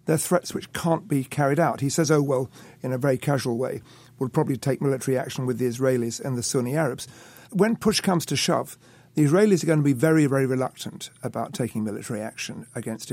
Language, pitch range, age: English, 125-155 Hz, 50-69